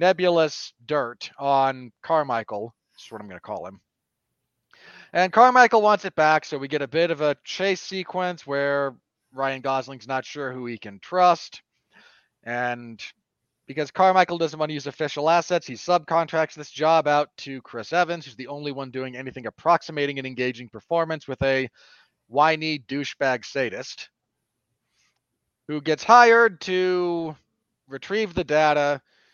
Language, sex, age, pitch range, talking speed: English, male, 40-59, 125-165 Hz, 150 wpm